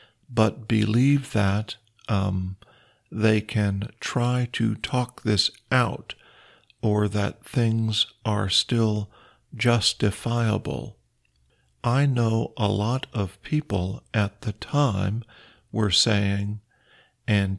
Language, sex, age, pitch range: Thai, male, 50-69, 105-125 Hz